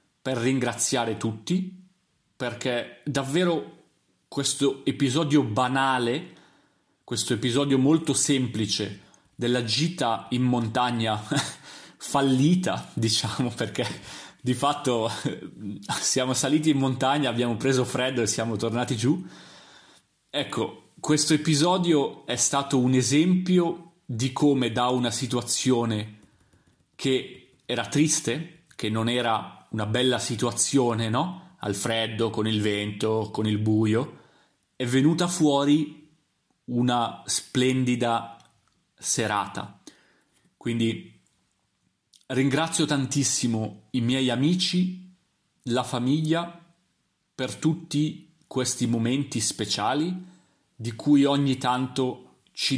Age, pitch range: 30-49, 115-150 Hz